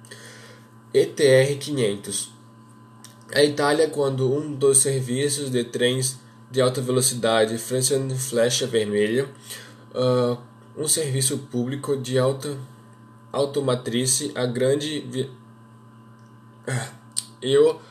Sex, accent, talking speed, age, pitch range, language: male, Brazilian, 85 wpm, 10-29, 115-135 Hz, Portuguese